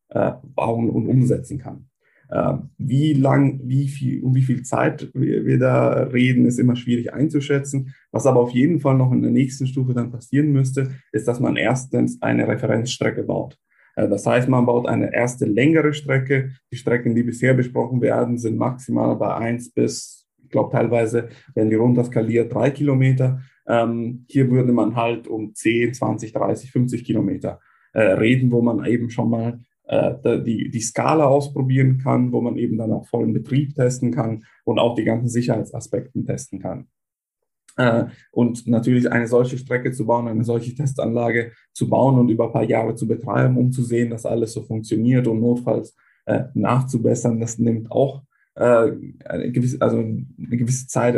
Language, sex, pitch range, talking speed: German, male, 115-130 Hz, 165 wpm